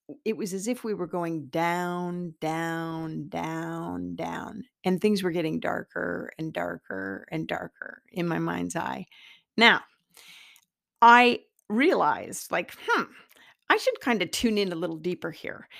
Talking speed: 150 wpm